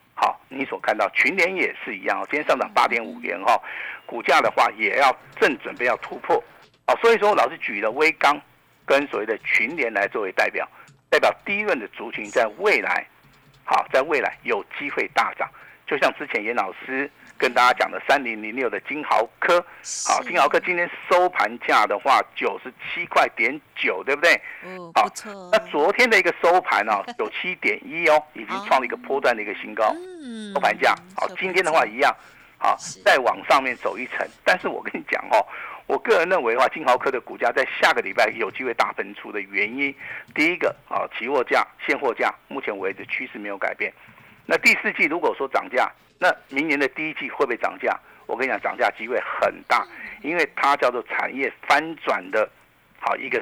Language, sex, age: Chinese, male, 50-69